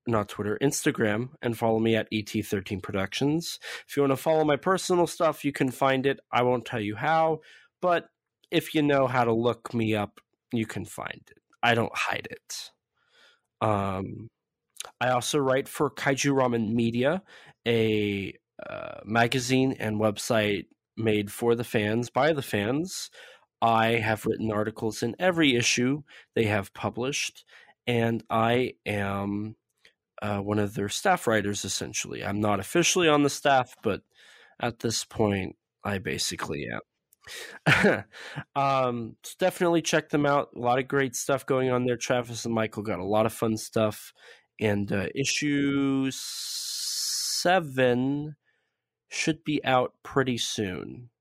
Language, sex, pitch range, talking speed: English, male, 105-140 Hz, 150 wpm